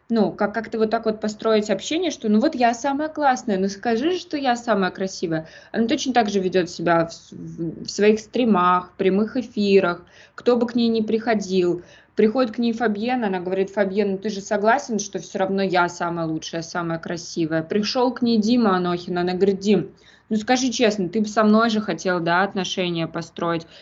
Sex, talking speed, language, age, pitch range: female, 190 wpm, Russian, 20-39, 180-225 Hz